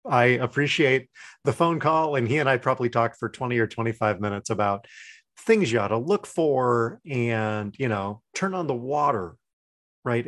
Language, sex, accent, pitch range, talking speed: English, male, American, 105-140 Hz, 180 wpm